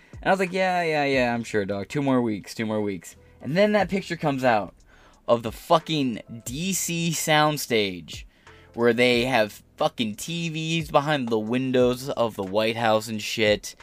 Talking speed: 180 wpm